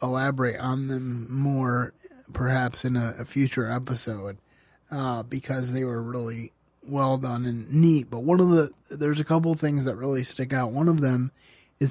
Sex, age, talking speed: male, 30-49, 180 wpm